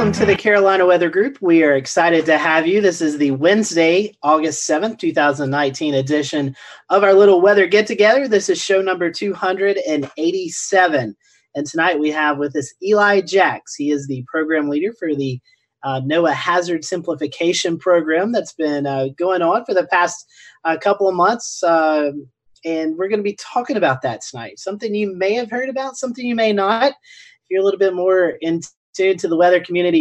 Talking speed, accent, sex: 190 wpm, American, male